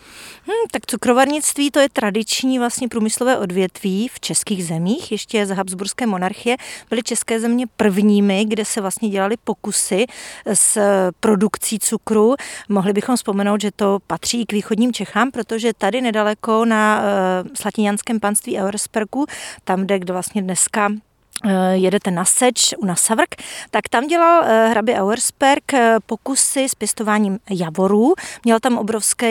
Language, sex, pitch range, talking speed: Czech, female, 195-230 Hz, 135 wpm